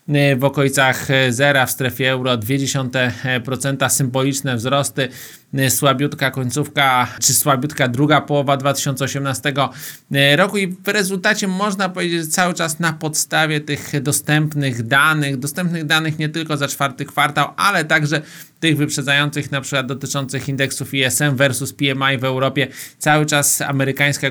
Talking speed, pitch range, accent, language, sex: 130 wpm, 130-150 Hz, native, Polish, male